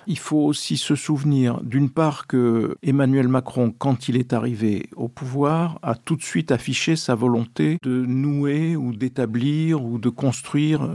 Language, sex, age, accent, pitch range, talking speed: French, male, 50-69, French, 120-145 Hz, 165 wpm